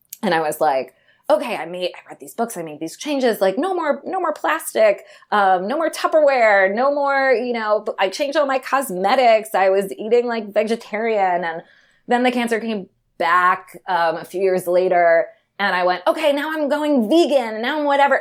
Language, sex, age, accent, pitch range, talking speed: English, female, 20-39, American, 155-245 Hz, 200 wpm